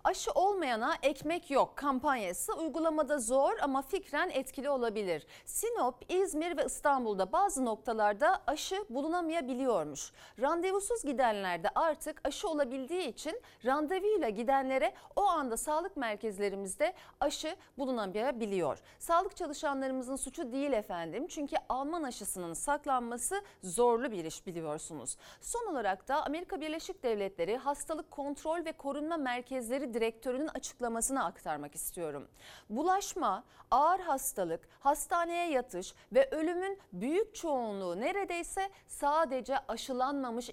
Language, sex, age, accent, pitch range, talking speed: Turkish, female, 40-59, native, 230-325 Hz, 110 wpm